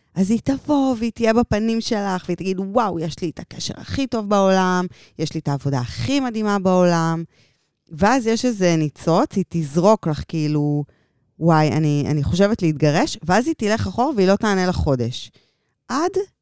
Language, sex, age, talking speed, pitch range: Hebrew, female, 20-39, 170 wpm, 150-205 Hz